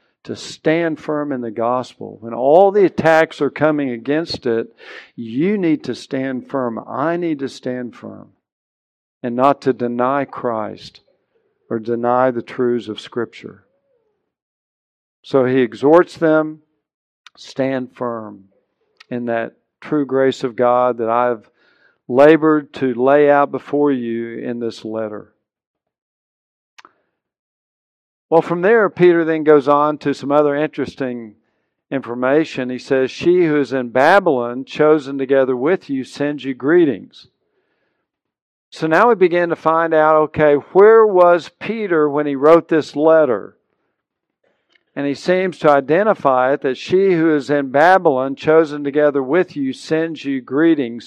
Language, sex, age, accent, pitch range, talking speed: English, male, 50-69, American, 130-160 Hz, 140 wpm